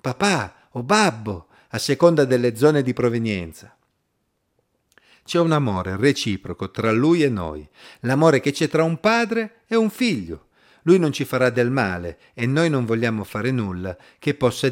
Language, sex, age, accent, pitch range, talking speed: Italian, male, 50-69, native, 115-170 Hz, 165 wpm